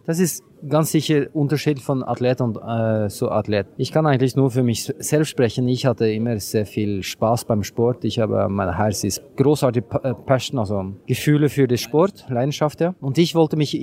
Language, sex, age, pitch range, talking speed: German, male, 20-39, 125-150 Hz, 200 wpm